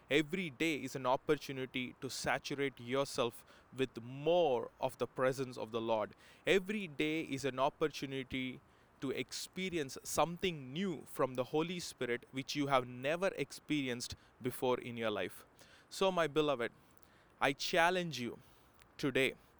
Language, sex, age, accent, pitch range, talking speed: English, male, 20-39, Indian, 125-155 Hz, 140 wpm